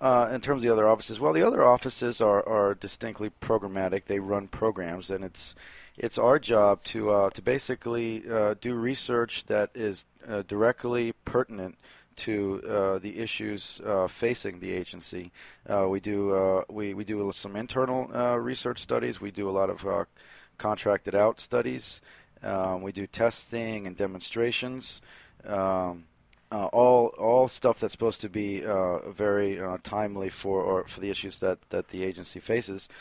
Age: 40-59